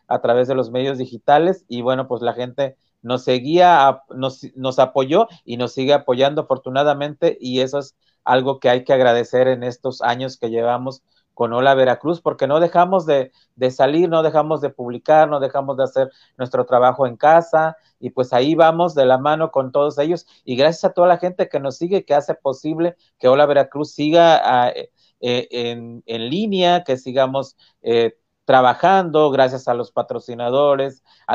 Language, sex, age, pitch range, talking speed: Spanish, male, 40-59, 125-150 Hz, 185 wpm